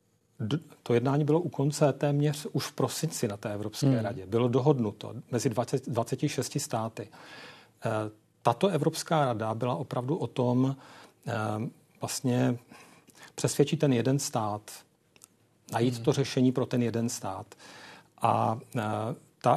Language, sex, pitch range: Czech, male, 115-140 Hz